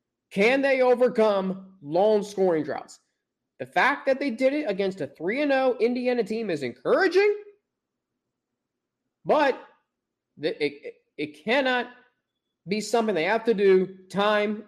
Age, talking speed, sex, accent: 30-49, 125 wpm, male, American